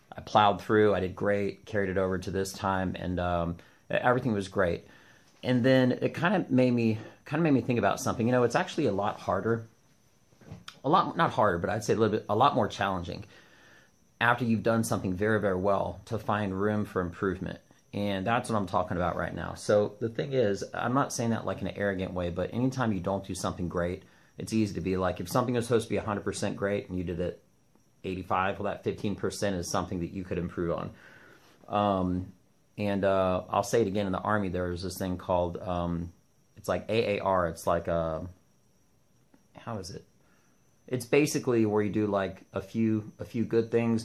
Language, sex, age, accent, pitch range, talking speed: English, male, 30-49, American, 90-110 Hz, 215 wpm